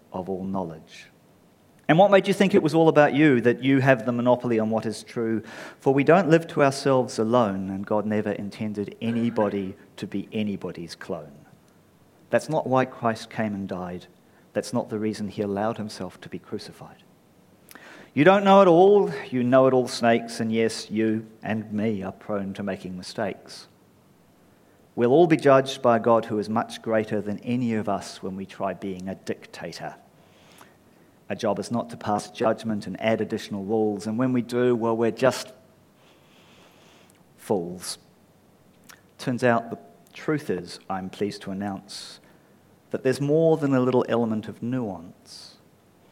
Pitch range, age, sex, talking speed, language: 105-130 Hz, 40-59, male, 175 wpm, English